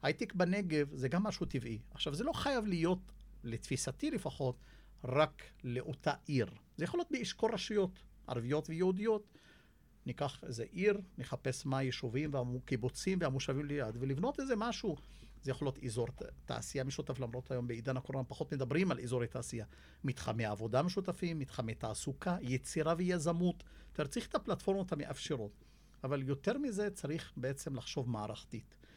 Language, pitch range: Hebrew, 120-160 Hz